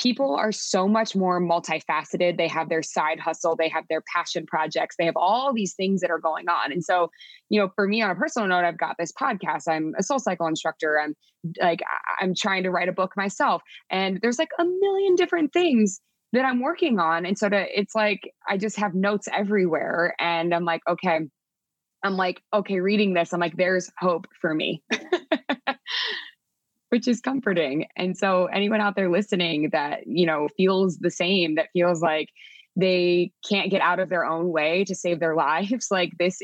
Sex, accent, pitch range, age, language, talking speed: female, American, 170-215 Hz, 20-39, English, 200 wpm